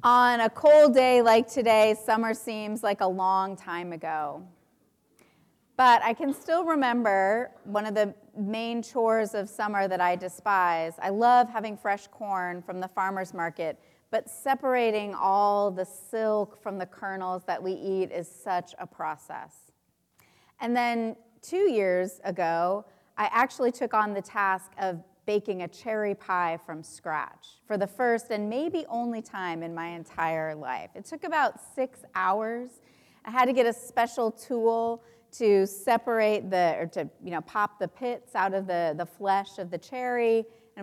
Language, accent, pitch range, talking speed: English, American, 185-235 Hz, 165 wpm